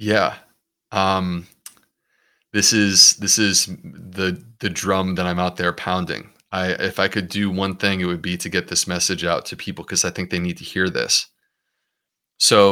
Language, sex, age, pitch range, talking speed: English, male, 30-49, 90-100 Hz, 190 wpm